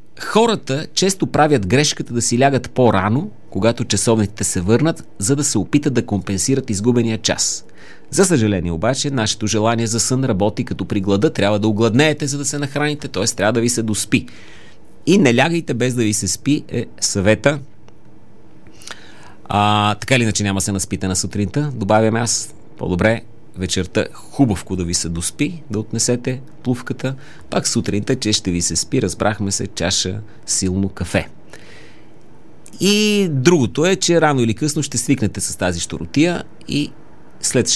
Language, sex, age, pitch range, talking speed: Bulgarian, male, 30-49, 100-130 Hz, 160 wpm